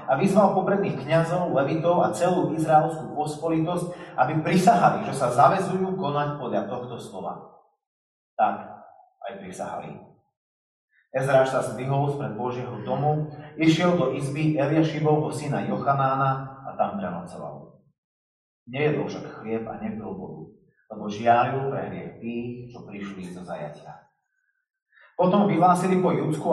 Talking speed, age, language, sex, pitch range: 125 wpm, 30-49, Slovak, male, 130-175 Hz